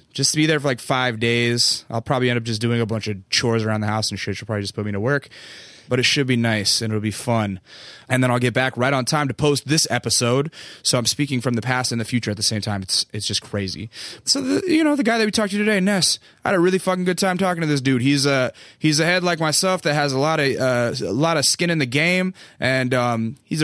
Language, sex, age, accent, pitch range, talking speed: English, male, 20-39, American, 115-145 Hz, 285 wpm